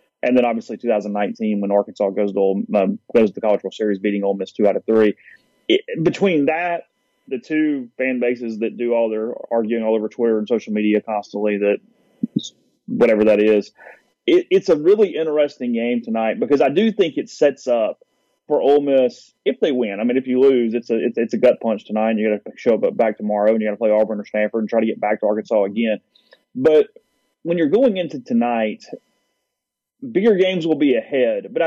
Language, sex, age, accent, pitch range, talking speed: English, male, 30-49, American, 110-155 Hz, 220 wpm